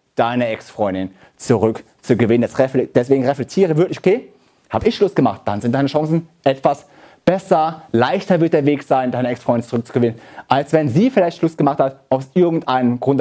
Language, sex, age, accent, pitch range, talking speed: German, male, 30-49, German, 125-175 Hz, 165 wpm